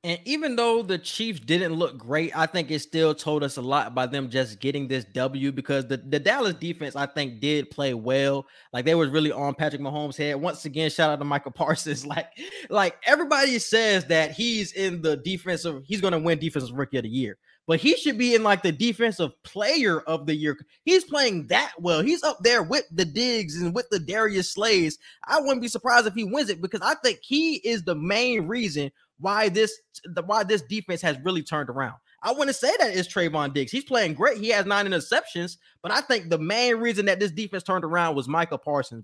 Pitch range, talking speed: 150-215 Hz, 225 wpm